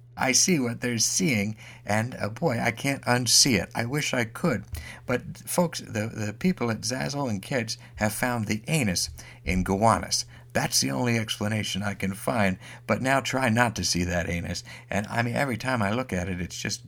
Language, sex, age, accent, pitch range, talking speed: English, male, 60-79, American, 95-120 Hz, 205 wpm